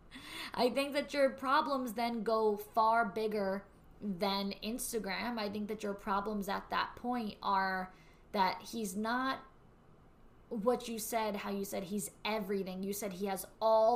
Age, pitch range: 20-39, 190-230 Hz